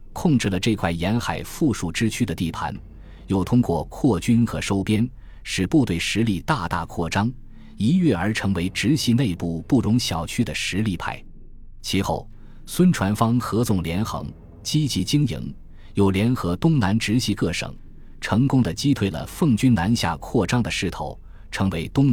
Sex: male